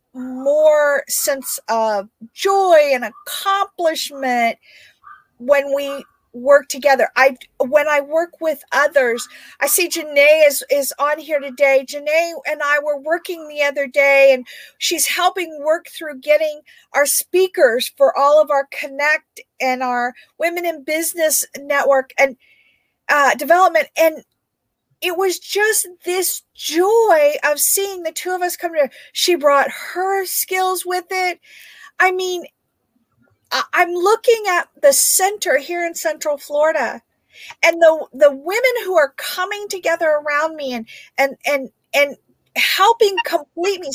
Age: 50-69